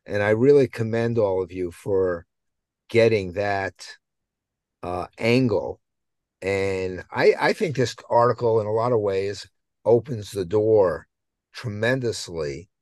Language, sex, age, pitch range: English, male, 50-69, 90-120 Hz